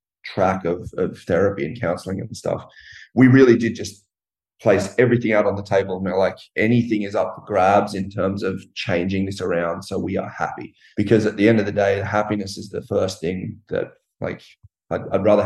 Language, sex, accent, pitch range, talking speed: English, male, Australian, 100-115 Hz, 215 wpm